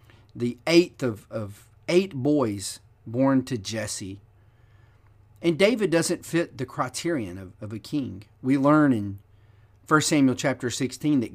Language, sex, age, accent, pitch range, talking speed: English, male, 40-59, American, 110-135 Hz, 145 wpm